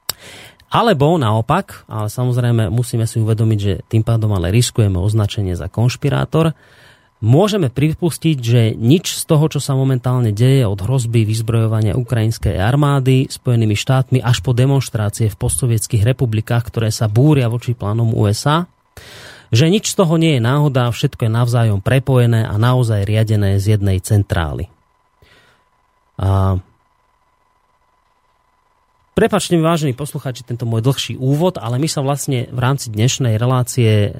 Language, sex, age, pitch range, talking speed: Slovak, male, 30-49, 115-140 Hz, 135 wpm